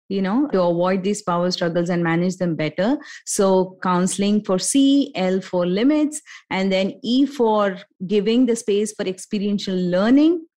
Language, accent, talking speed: English, Indian, 160 wpm